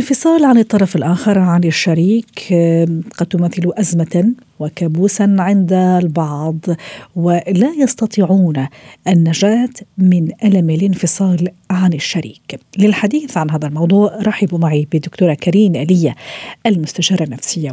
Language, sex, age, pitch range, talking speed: Arabic, female, 50-69, 160-205 Hz, 105 wpm